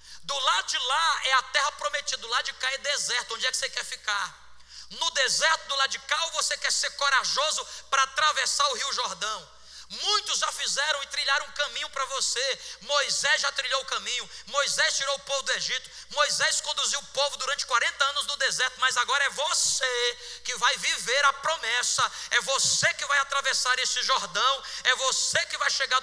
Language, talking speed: Portuguese, 200 wpm